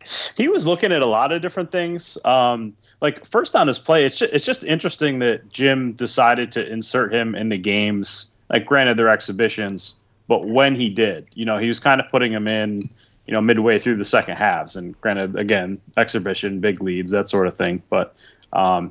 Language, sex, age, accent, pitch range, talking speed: English, male, 30-49, American, 100-120 Hz, 205 wpm